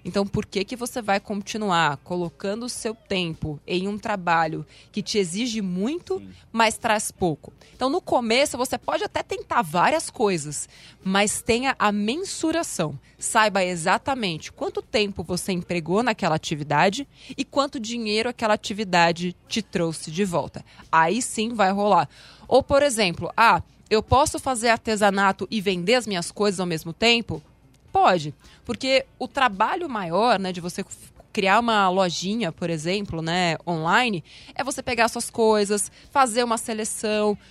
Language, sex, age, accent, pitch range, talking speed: Portuguese, female, 20-39, Brazilian, 185-245 Hz, 150 wpm